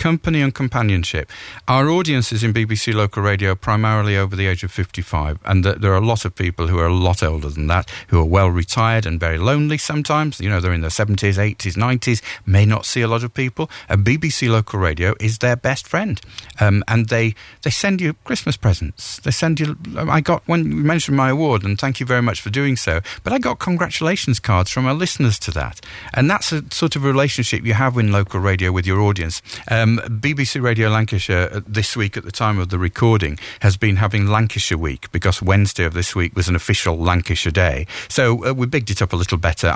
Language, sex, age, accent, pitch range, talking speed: English, male, 50-69, British, 95-125 Hz, 225 wpm